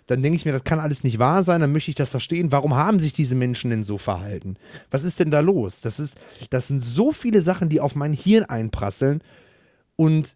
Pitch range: 125-165 Hz